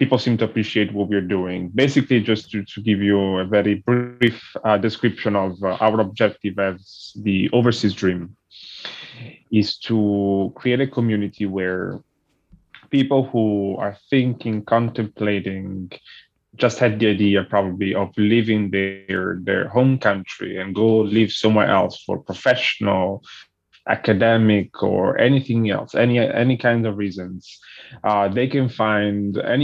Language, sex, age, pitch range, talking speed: English, male, 20-39, 100-120 Hz, 140 wpm